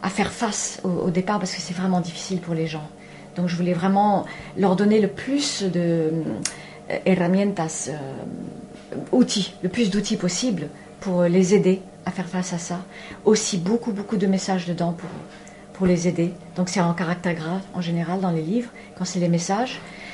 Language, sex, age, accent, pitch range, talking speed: French, female, 40-59, French, 170-200 Hz, 185 wpm